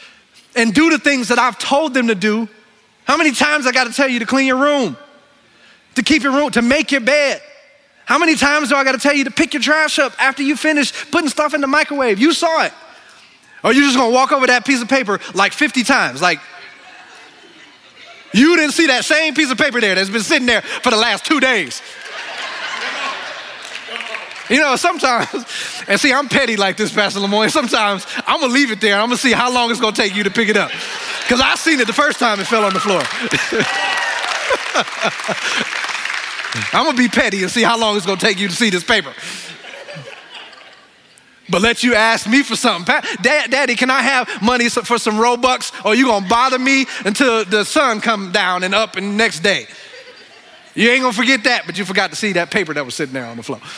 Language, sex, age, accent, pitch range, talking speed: English, male, 20-39, American, 215-285 Hz, 230 wpm